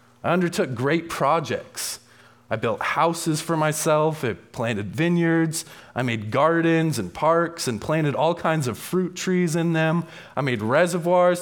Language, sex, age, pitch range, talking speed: English, male, 20-39, 125-165 Hz, 150 wpm